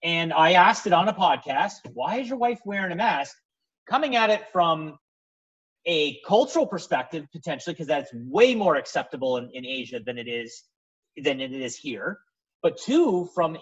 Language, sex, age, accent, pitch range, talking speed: English, male, 30-49, American, 130-195 Hz, 175 wpm